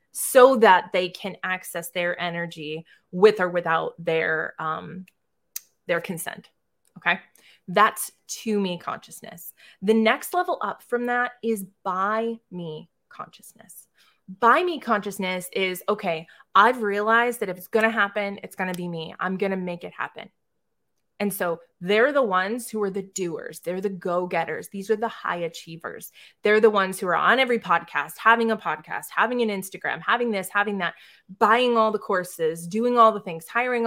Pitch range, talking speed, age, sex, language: 180-225 Hz, 170 wpm, 20-39, female, English